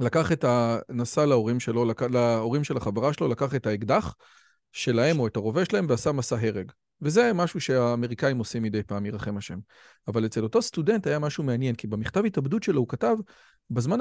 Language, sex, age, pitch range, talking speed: Hebrew, male, 40-59, 120-195 Hz, 185 wpm